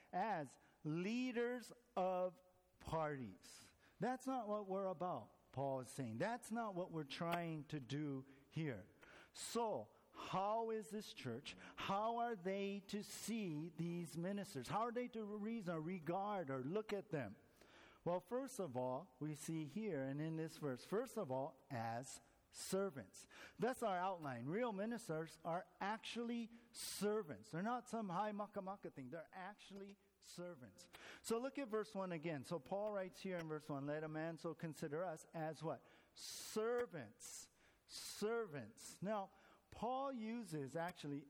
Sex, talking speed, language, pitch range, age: male, 150 wpm, English, 155-210 Hz, 50-69